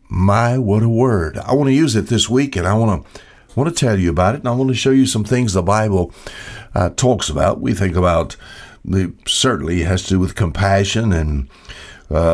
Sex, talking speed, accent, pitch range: male, 230 wpm, American, 90-125 Hz